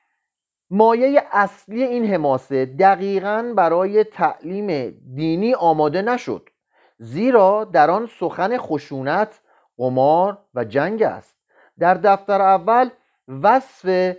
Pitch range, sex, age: 150-215 Hz, male, 40-59